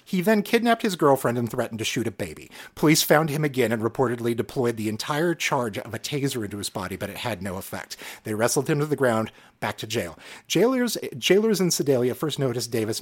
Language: English